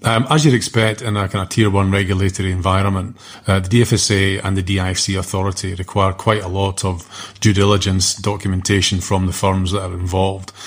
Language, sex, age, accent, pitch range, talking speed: English, male, 30-49, British, 95-105 Hz, 185 wpm